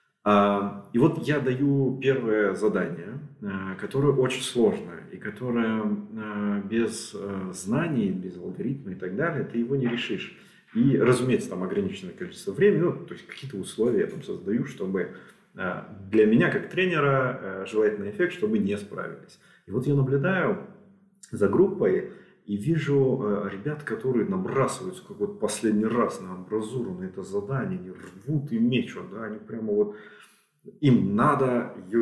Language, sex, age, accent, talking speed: Russian, male, 30-49, native, 145 wpm